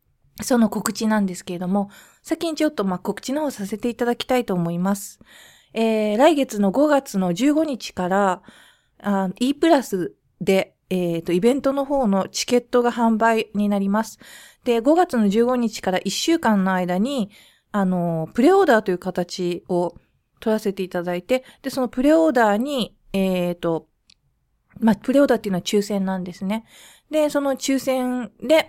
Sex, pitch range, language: female, 190-255 Hz, Japanese